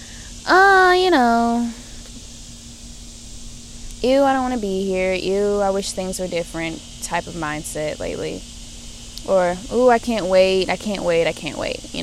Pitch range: 185-265 Hz